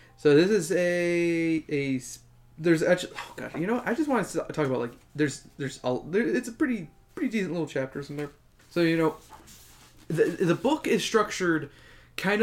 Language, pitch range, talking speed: English, 135-175 Hz, 195 wpm